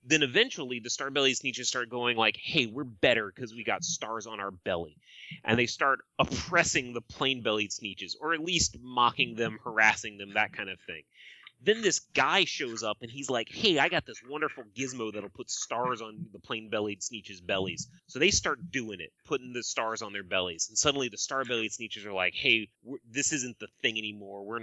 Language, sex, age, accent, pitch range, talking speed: English, male, 30-49, American, 105-130 Hz, 200 wpm